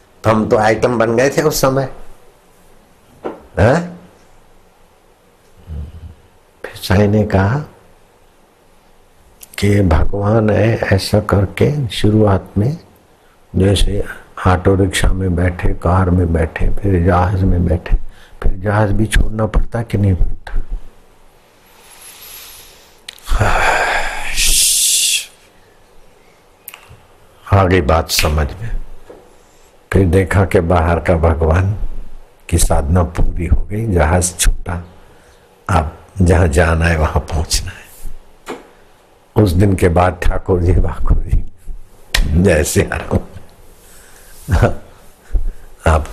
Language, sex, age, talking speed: Hindi, male, 60-79, 95 wpm